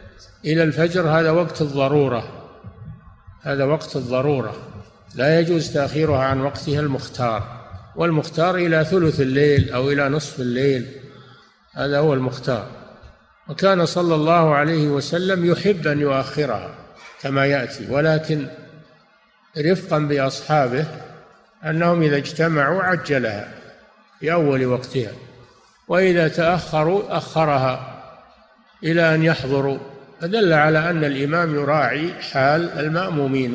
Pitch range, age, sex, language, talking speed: 135-170 Hz, 50-69, male, Arabic, 100 wpm